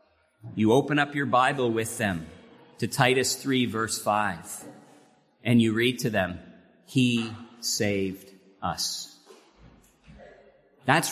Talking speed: 115 wpm